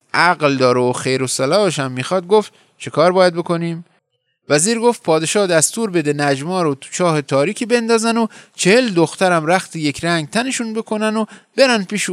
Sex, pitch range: male, 130-190 Hz